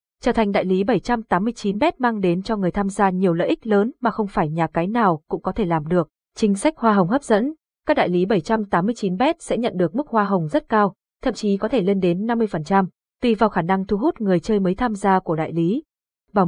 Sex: female